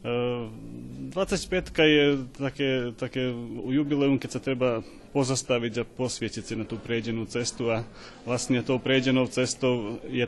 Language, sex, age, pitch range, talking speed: Slovak, male, 30-49, 115-130 Hz, 130 wpm